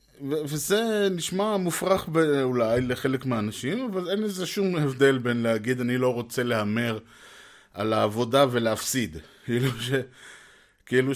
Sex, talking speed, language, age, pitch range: male, 130 wpm, Hebrew, 20-39, 115-150 Hz